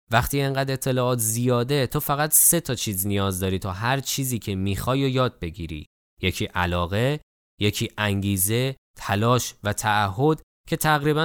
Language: Persian